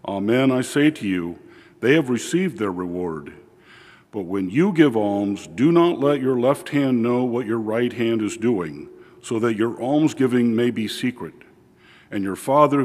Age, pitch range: 50-69, 115-145 Hz